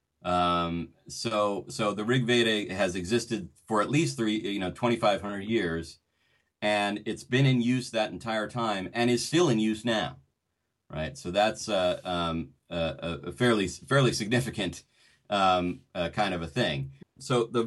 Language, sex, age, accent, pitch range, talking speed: English, male, 30-49, American, 85-115 Hz, 165 wpm